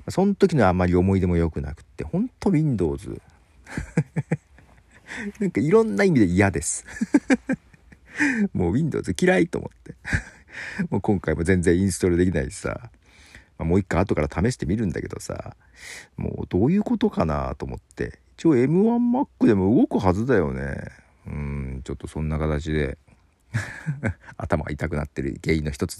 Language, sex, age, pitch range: Japanese, male, 40-59, 80-120 Hz